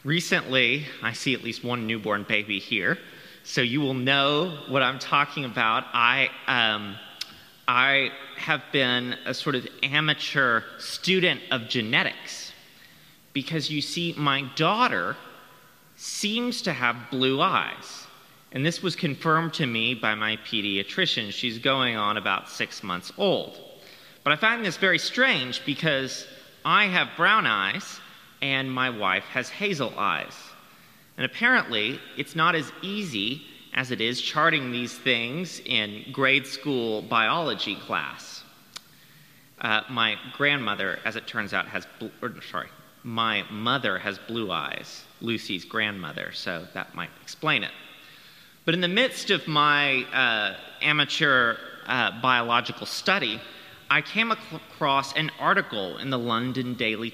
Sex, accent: male, American